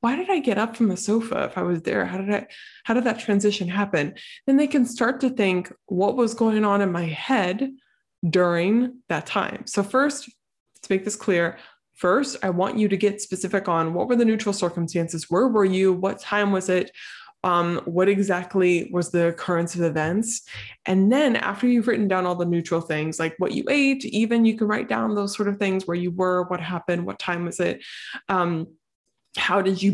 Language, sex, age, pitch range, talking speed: English, female, 20-39, 175-225 Hz, 210 wpm